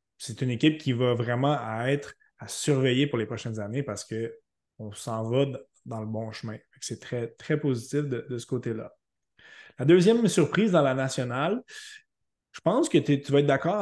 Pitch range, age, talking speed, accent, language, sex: 120-150 Hz, 20-39, 180 wpm, Canadian, French, male